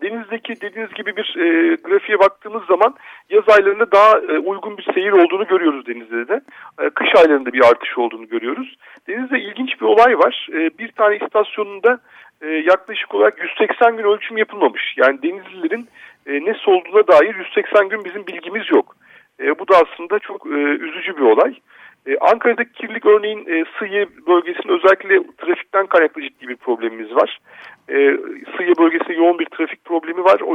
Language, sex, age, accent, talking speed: Turkish, male, 50-69, native, 165 wpm